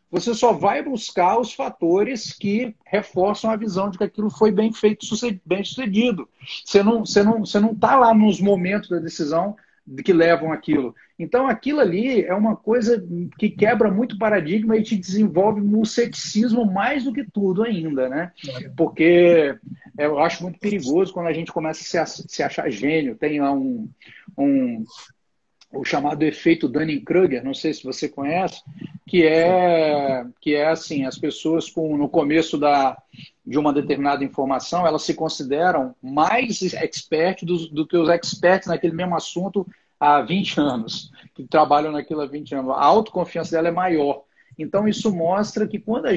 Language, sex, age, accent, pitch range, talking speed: Portuguese, male, 50-69, Brazilian, 155-215 Hz, 165 wpm